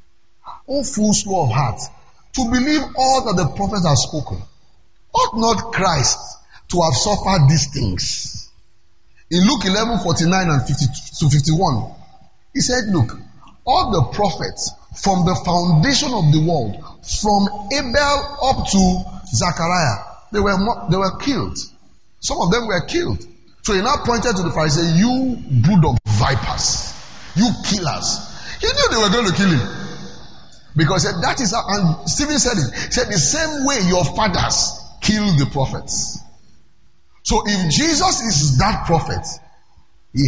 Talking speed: 150 wpm